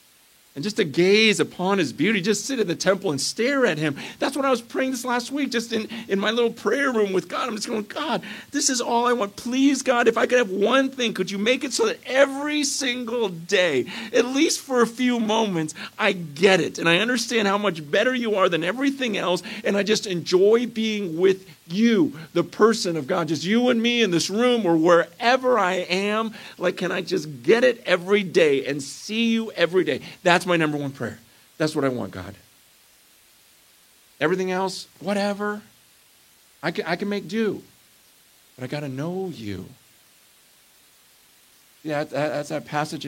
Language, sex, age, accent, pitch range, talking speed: English, male, 50-69, American, 155-225 Hz, 200 wpm